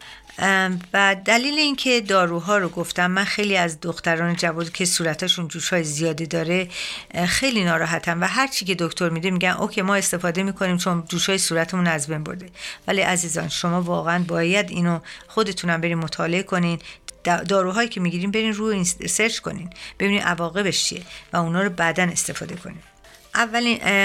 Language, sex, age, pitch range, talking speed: Persian, female, 50-69, 170-195 Hz, 155 wpm